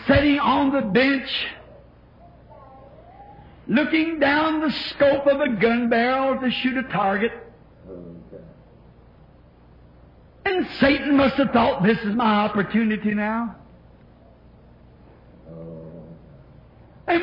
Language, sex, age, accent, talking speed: English, male, 60-79, American, 95 wpm